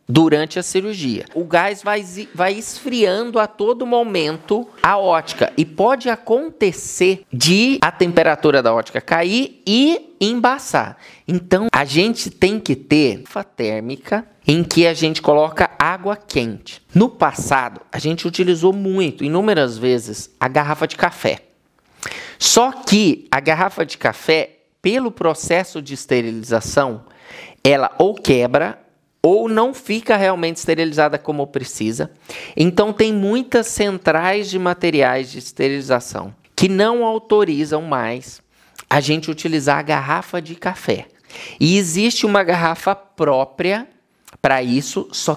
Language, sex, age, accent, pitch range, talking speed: Portuguese, male, 20-39, Brazilian, 150-205 Hz, 130 wpm